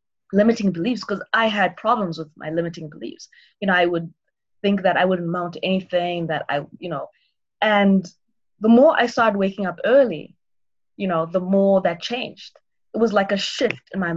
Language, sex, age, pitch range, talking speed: English, female, 20-39, 170-220 Hz, 190 wpm